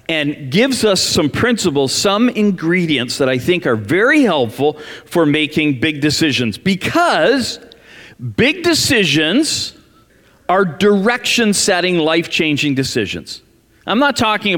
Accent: American